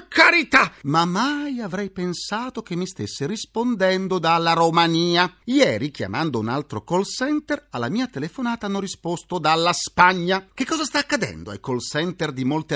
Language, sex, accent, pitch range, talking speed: Italian, male, native, 130-215 Hz, 155 wpm